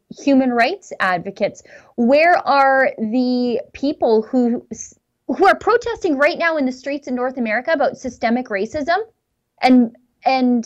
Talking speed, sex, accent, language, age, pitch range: 135 wpm, female, American, English, 20-39, 210-260 Hz